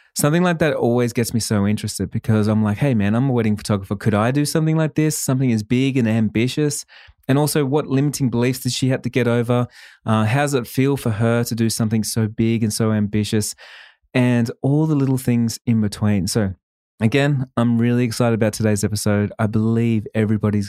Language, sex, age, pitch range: English, male, 20-39, 105-125 Hz